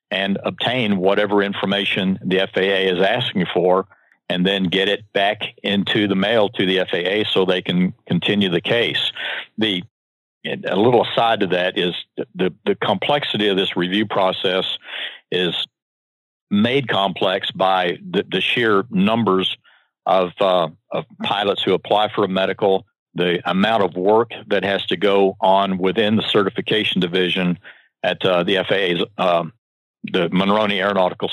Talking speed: 150 wpm